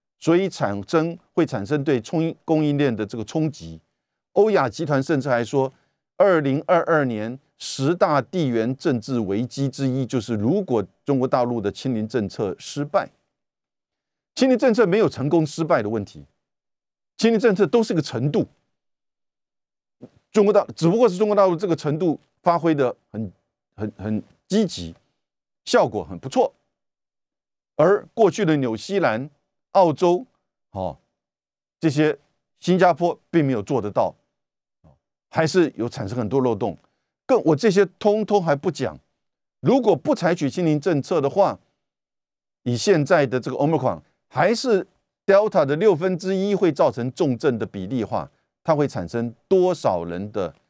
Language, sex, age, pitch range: Chinese, male, 50-69, 120-180 Hz